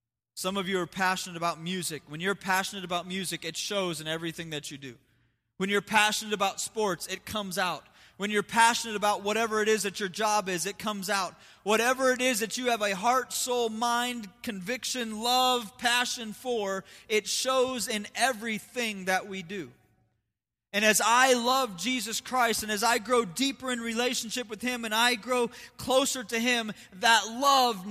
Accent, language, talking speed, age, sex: American, English, 185 wpm, 20-39, male